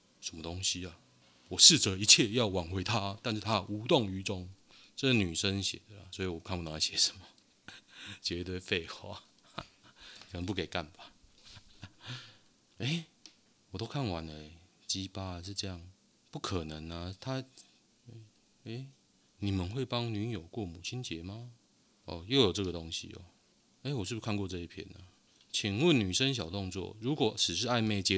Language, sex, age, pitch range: Chinese, male, 30-49, 90-110 Hz